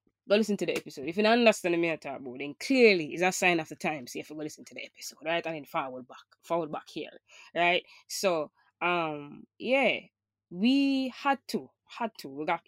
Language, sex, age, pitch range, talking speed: English, female, 20-39, 150-190 Hz, 230 wpm